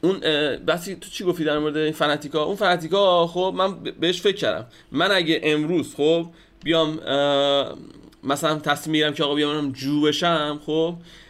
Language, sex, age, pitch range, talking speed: Persian, male, 30-49, 150-195 Hz, 150 wpm